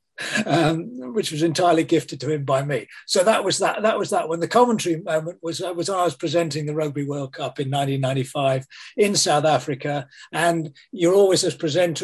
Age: 40-59